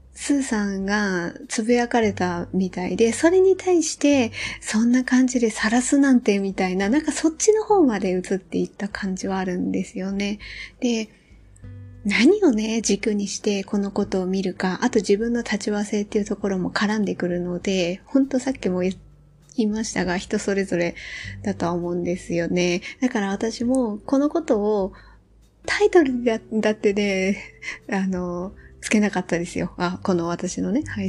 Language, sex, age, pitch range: Japanese, female, 20-39, 180-245 Hz